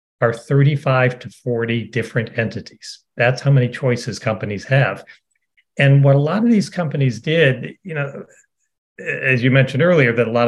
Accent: American